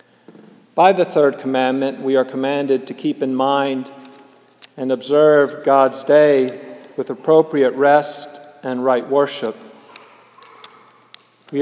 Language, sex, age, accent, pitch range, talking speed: English, male, 50-69, American, 125-150 Hz, 115 wpm